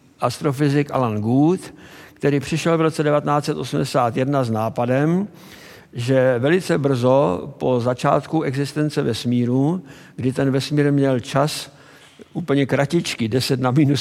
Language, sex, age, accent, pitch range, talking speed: Czech, male, 60-79, native, 130-150 Hz, 115 wpm